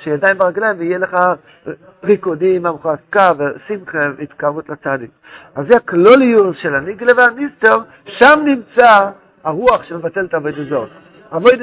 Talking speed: 130 wpm